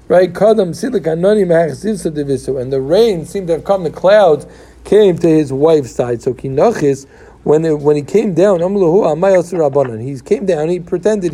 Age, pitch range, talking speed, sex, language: 50-69, 150-195 Hz, 140 wpm, male, English